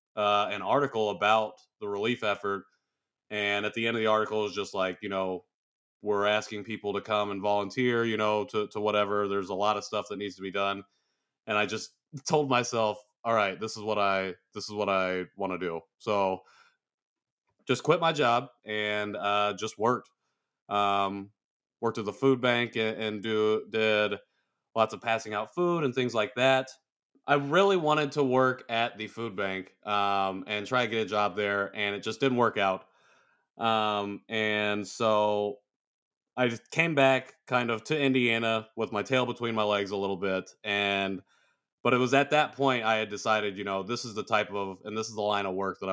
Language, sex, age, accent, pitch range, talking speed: English, male, 30-49, American, 100-120 Hz, 205 wpm